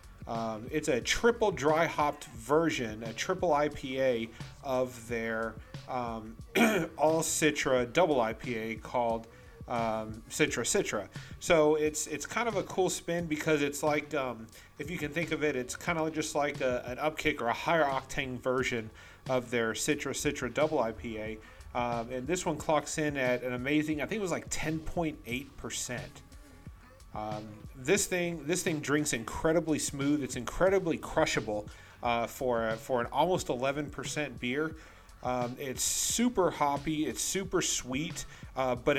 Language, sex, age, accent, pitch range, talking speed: English, male, 30-49, American, 120-155 Hz, 155 wpm